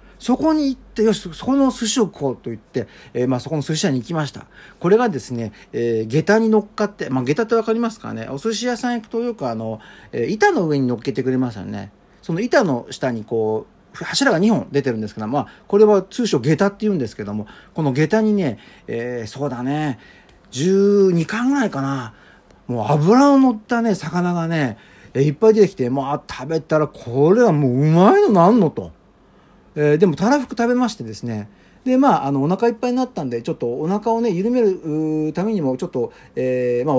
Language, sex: Japanese, male